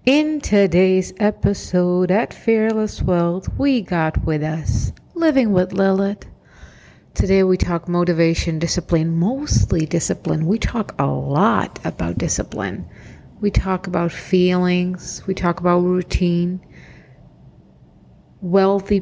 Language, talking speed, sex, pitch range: English, 110 wpm, female, 170-195 Hz